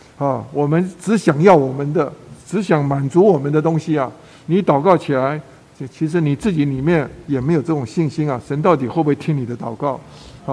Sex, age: male, 50-69